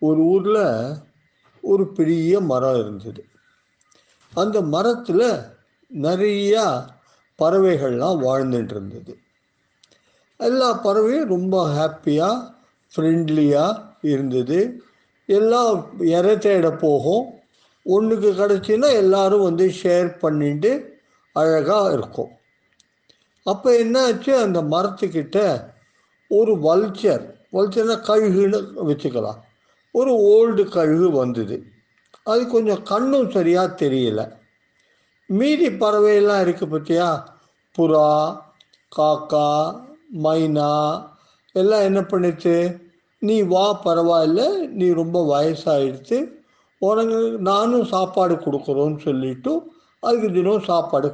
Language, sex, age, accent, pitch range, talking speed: Tamil, male, 50-69, native, 155-215 Hz, 85 wpm